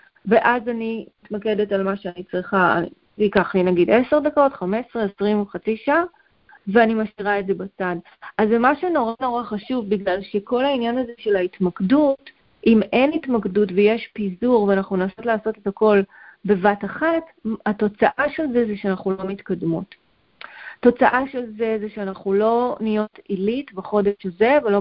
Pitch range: 195-240 Hz